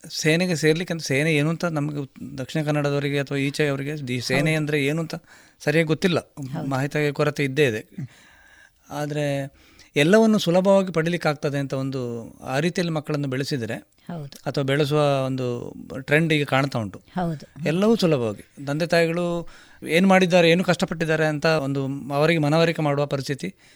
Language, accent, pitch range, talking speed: Kannada, native, 140-170 Hz, 135 wpm